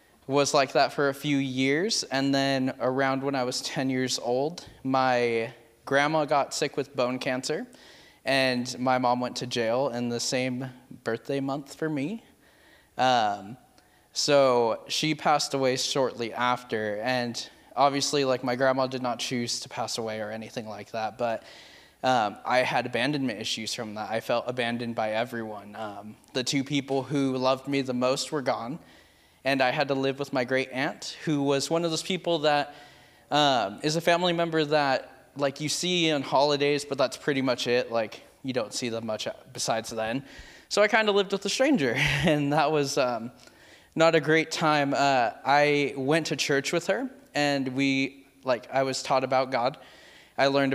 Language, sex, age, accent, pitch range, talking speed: English, male, 10-29, American, 125-145 Hz, 185 wpm